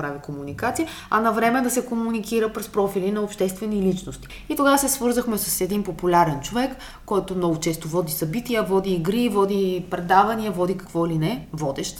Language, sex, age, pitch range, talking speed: Bulgarian, female, 20-39, 175-235 Hz, 180 wpm